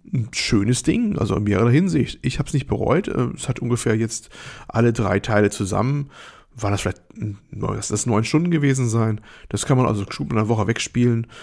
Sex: male